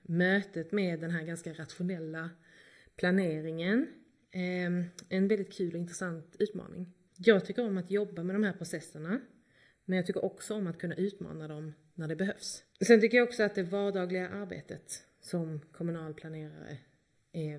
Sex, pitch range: female, 165-195 Hz